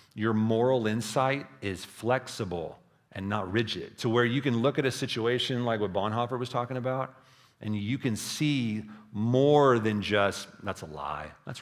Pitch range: 105-130 Hz